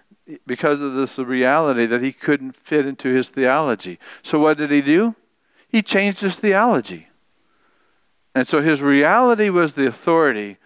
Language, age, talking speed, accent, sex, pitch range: English, 60-79, 150 wpm, American, male, 130-180 Hz